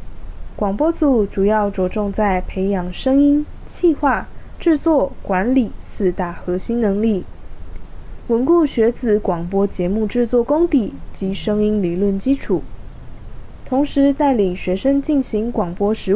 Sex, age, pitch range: female, 10-29, 190-245 Hz